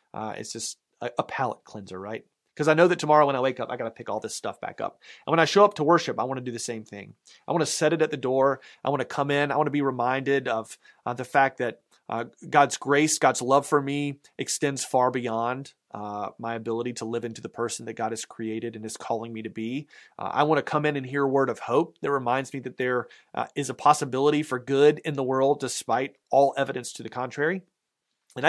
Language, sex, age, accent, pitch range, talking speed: English, male, 30-49, American, 120-150 Hz, 260 wpm